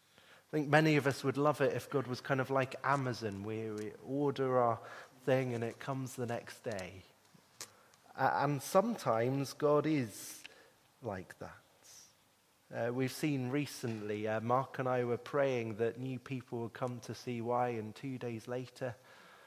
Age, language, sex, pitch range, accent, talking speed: 30-49, English, male, 115-145 Hz, British, 170 wpm